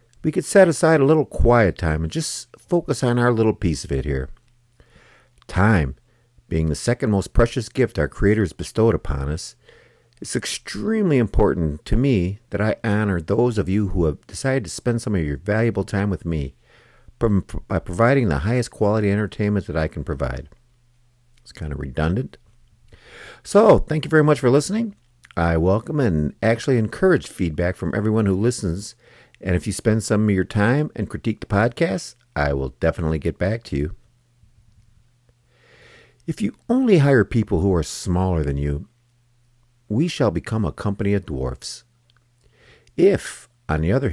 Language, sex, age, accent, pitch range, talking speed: English, male, 50-69, American, 85-120 Hz, 170 wpm